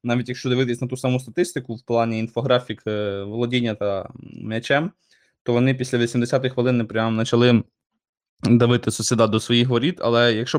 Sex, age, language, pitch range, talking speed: male, 20-39, Ukrainian, 115-140 Hz, 155 wpm